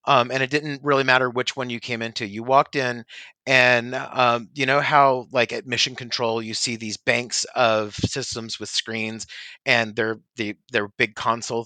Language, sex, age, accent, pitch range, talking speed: English, male, 30-49, American, 115-135 Hz, 190 wpm